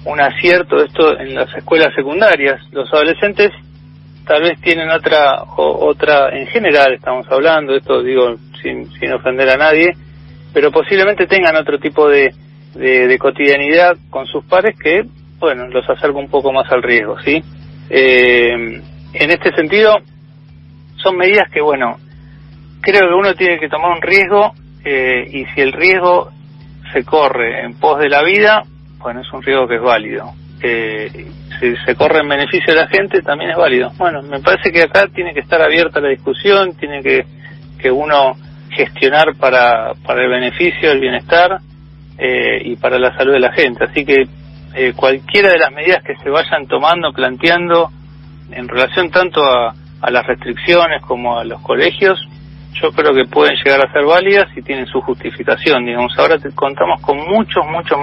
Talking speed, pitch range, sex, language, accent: 175 wpm, 125-170 Hz, male, Spanish, Argentinian